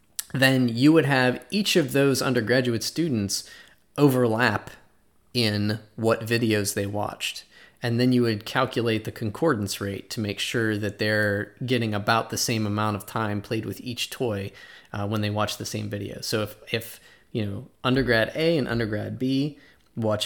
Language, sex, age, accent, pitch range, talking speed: English, male, 20-39, American, 105-125 Hz, 170 wpm